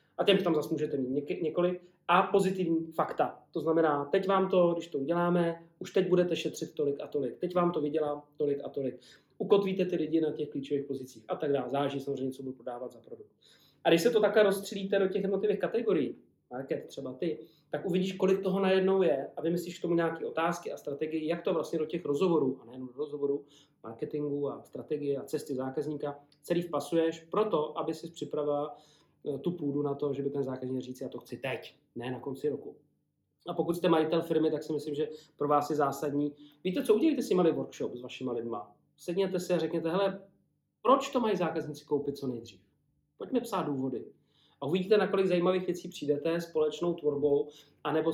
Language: Czech